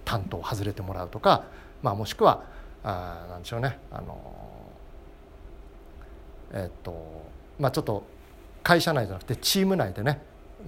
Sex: male